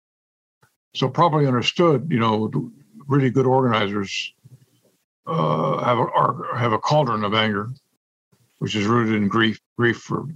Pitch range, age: 115-145 Hz, 60-79